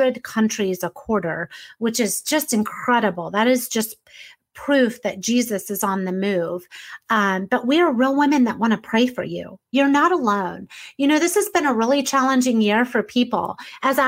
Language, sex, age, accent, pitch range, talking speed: English, female, 30-49, American, 215-275 Hz, 190 wpm